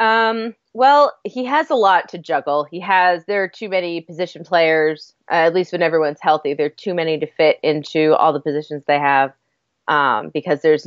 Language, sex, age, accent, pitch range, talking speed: English, female, 30-49, American, 155-200 Hz, 205 wpm